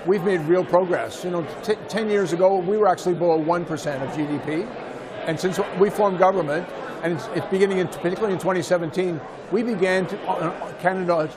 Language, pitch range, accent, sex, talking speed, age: English, 160-185 Hz, American, male, 165 wpm, 50-69